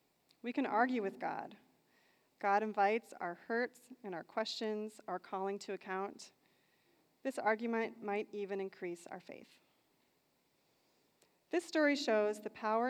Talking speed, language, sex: 130 wpm, English, female